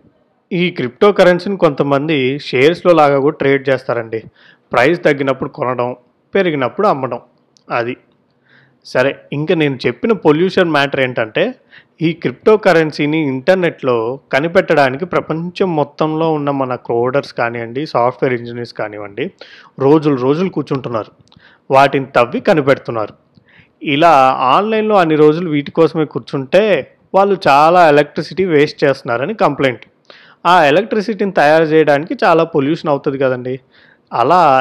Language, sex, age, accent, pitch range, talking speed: Telugu, male, 30-49, native, 135-175 Hz, 110 wpm